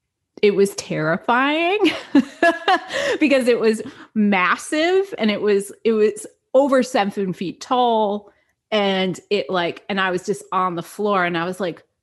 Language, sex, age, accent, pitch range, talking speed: English, female, 30-49, American, 170-220 Hz, 150 wpm